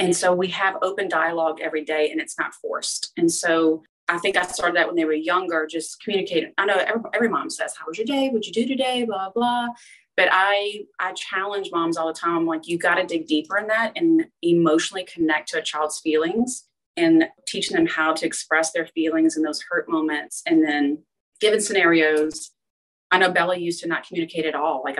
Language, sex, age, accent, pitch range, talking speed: English, female, 30-49, American, 160-215 Hz, 220 wpm